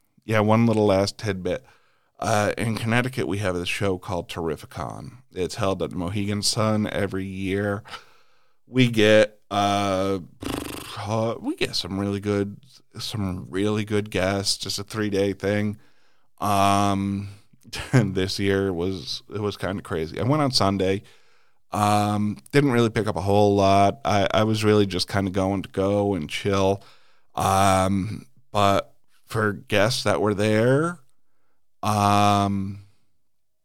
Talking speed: 145 wpm